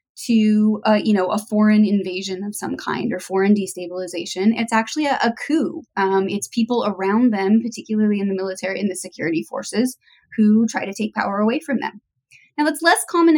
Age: 20-39